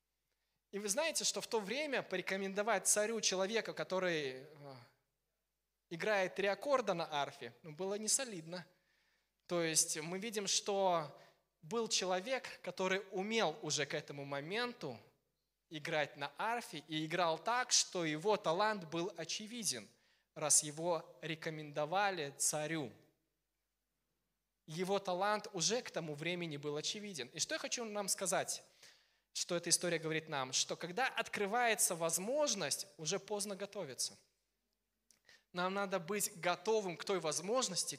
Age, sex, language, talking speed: 20-39, male, Russian, 125 wpm